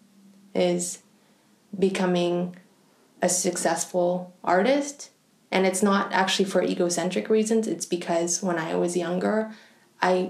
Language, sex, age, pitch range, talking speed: English, female, 20-39, 175-205 Hz, 110 wpm